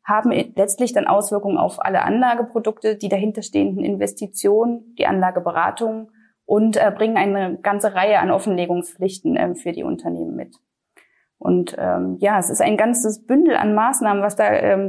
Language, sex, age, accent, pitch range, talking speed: German, female, 20-39, German, 195-225 Hz, 145 wpm